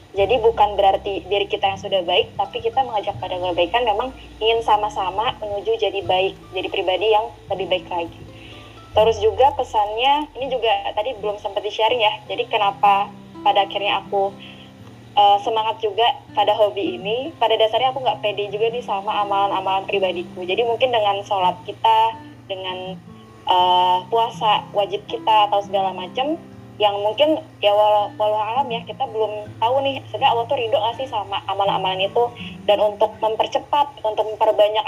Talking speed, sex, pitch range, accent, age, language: 160 wpm, female, 195-240 Hz, native, 20-39, Indonesian